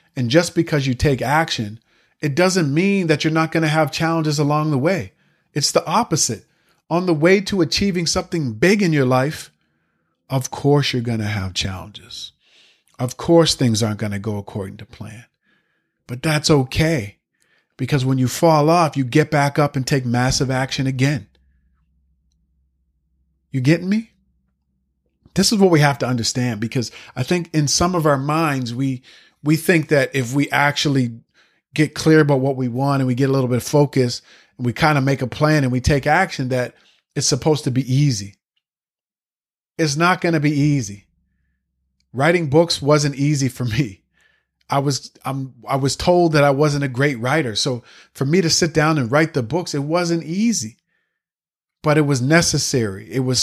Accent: American